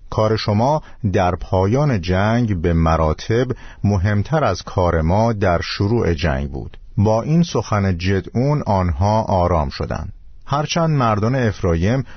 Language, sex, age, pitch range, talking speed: Persian, male, 50-69, 90-120 Hz, 125 wpm